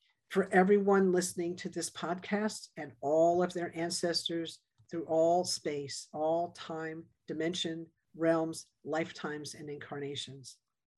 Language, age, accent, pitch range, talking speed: English, 50-69, American, 145-180 Hz, 115 wpm